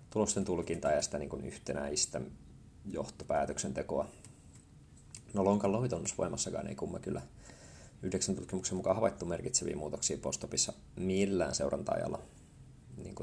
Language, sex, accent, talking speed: Finnish, male, native, 105 wpm